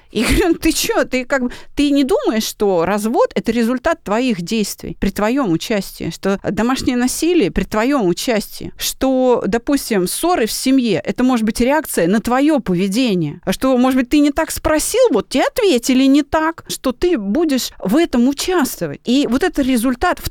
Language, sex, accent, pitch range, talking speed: Russian, female, native, 190-265 Hz, 175 wpm